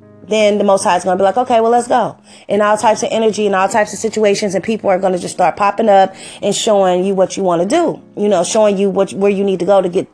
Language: English